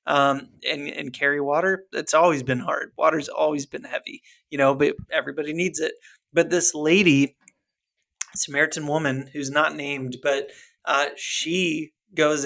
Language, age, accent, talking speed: English, 30-49, American, 150 wpm